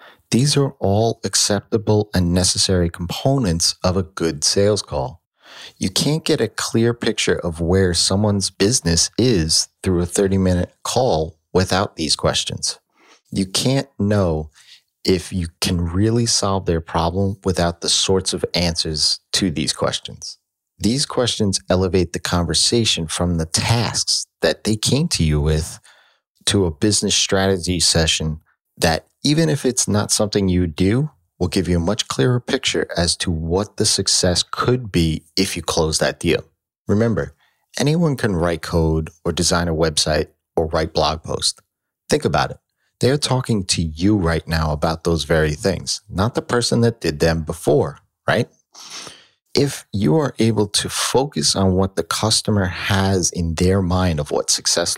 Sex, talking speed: male, 160 wpm